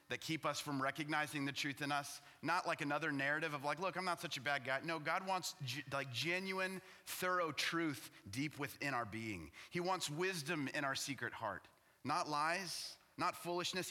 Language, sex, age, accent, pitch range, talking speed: English, male, 30-49, American, 145-195 Hz, 190 wpm